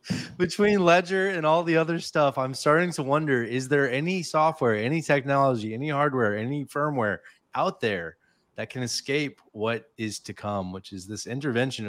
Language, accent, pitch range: English, American, 100-135 Hz